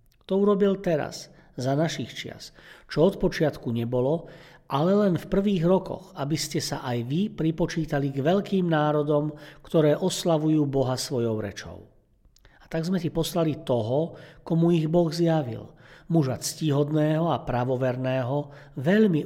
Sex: male